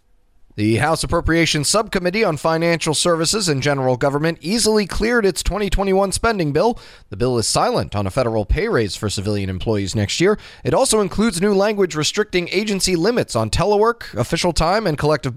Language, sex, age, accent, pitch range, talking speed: English, male, 30-49, American, 125-180 Hz, 170 wpm